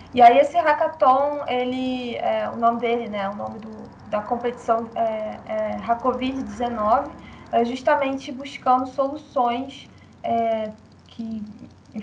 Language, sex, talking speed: Portuguese, female, 95 wpm